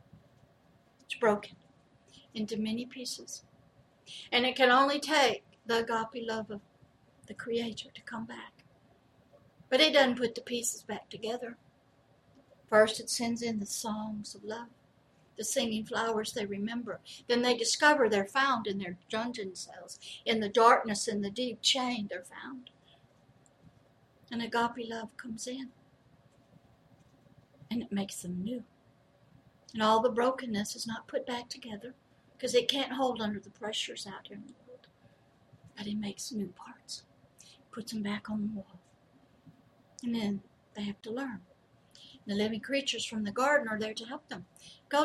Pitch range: 190-240 Hz